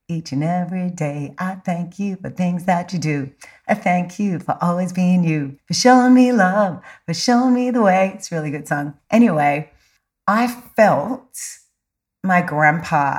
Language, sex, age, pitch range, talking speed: English, female, 30-49, 145-175 Hz, 175 wpm